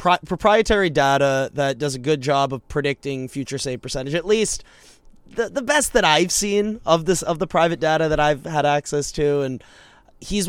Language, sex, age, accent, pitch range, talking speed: English, male, 20-39, American, 135-165 Hz, 190 wpm